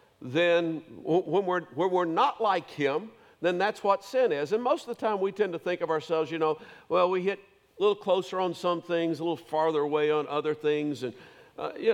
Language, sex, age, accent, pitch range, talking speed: English, male, 50-69, American, 155-195 Hz, 220 wpm